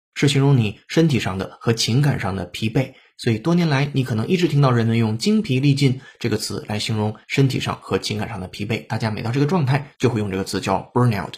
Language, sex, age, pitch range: Chinese, male, 20-39, 110-145 Hz